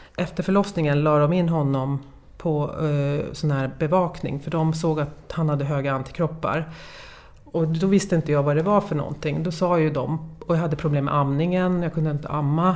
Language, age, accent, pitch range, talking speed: English, 30-49, Swedish, 145-175 Hz, 200 wpm